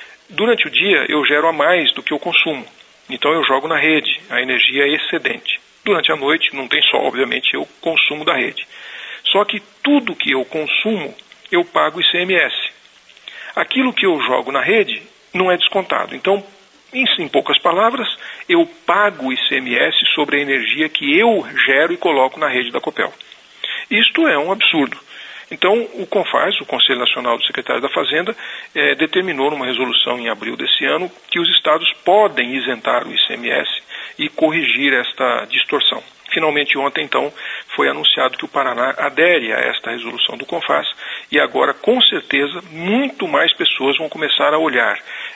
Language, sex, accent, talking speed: Portuguese, male, Brazilian, 165 wpm